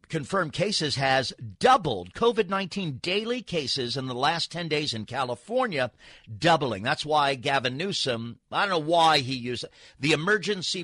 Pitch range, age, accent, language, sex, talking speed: 120-165 Hz, 50-69, American, English, male, 150 wpm